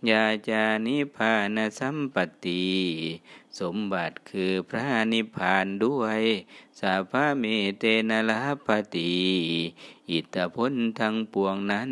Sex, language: male, Thai